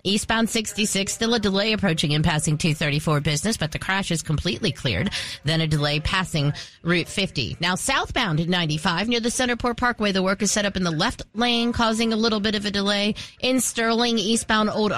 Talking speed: 195 wpm